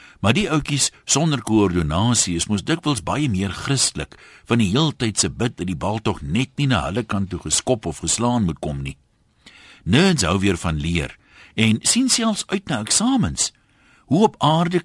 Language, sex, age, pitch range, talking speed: Dutch, male, 60-79, 85-135 Hz, 185 wpm